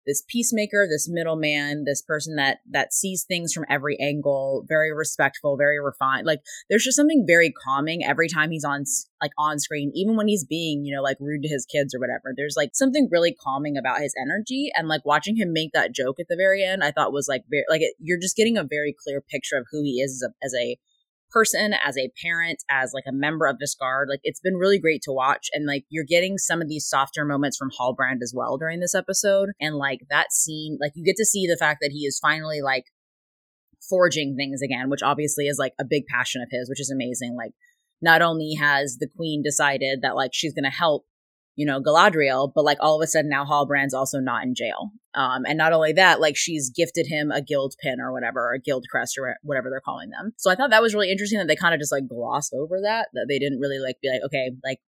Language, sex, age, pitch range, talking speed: English, female, 20-39, 135-170 Hz, 240 wpm